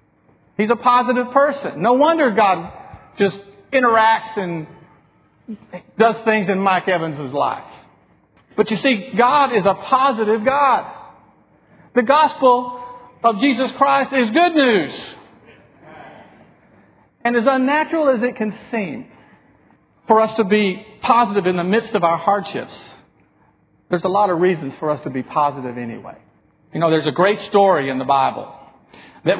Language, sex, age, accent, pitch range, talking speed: English, male, 50-69, American, 185-235 Hz, 145 wpm